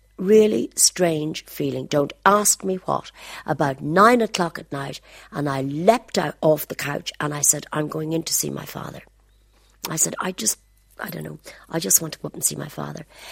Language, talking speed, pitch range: English, 205 wpm, 150-180 Hz